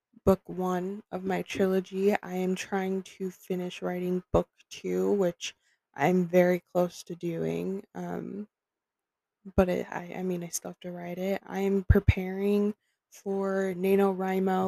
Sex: female